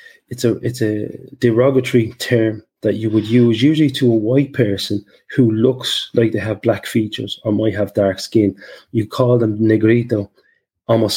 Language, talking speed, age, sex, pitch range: English, 170 wpm, 20-39, male, 100-120 Hz